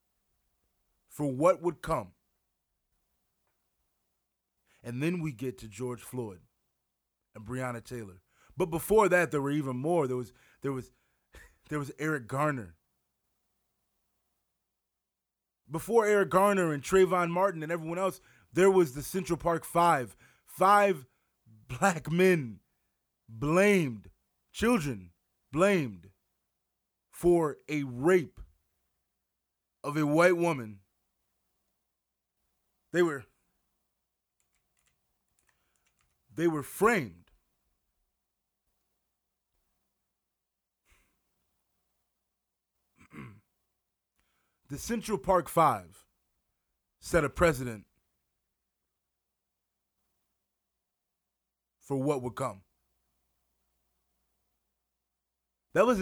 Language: English